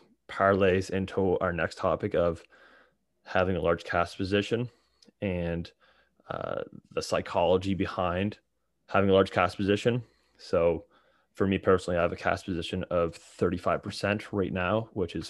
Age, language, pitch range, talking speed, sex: 20-39, English, 90-100 Hz, 140 wpm, male